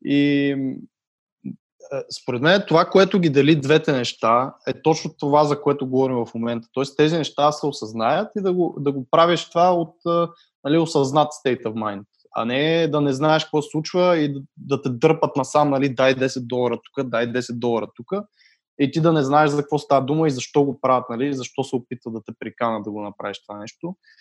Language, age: Bulgarian, 20-39